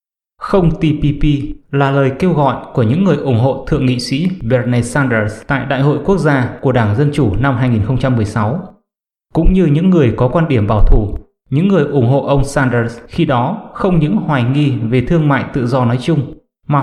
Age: 20-39